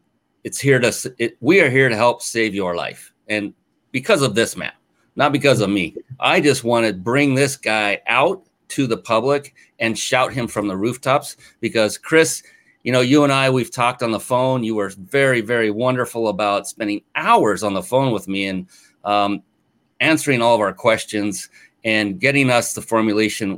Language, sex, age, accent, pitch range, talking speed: English, male, 30-49, American, 105-130 Hz, 190 wpm